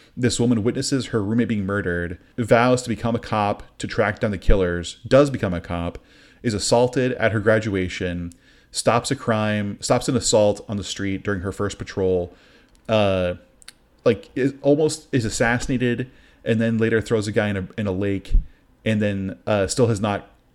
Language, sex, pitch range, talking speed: English, male, 95-115 Hz, 180 wpm